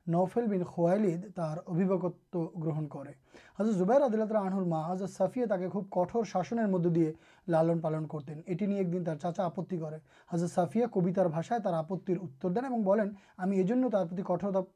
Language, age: Urdu, 30-49